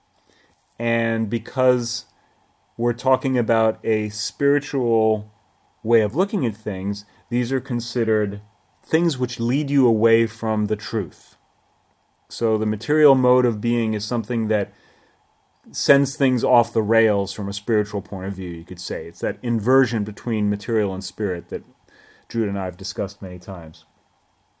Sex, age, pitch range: male, 30-49, 100-120 Hz